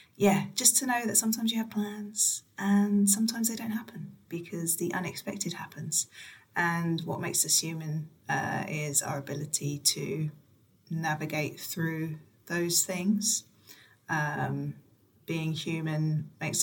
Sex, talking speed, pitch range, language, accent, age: female, 130 wpm, 160-195 Hz, English, British, 20-39